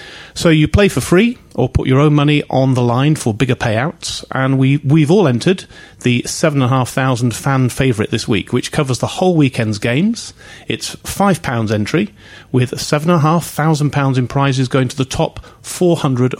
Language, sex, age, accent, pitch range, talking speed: English, male, 40-59, British, 120-150 Hz, 165 wpm